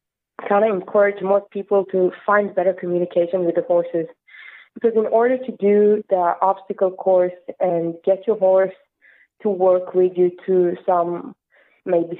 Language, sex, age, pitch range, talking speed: English, female, 20-39, 180-215 Hz, 150 wpm